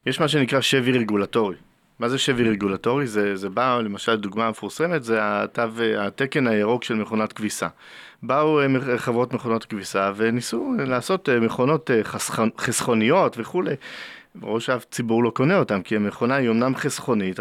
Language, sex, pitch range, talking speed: Hebrew, male, 110-145 Hz, 140 wpm